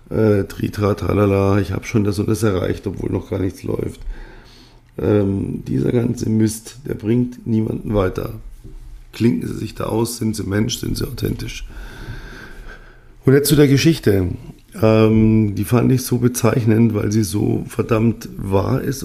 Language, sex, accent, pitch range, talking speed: German, male, German, 105-115 Hz, 160 wpm